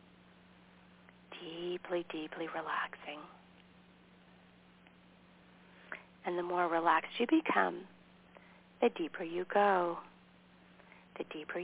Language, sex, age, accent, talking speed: English, female, 40-59, American, 75 wpm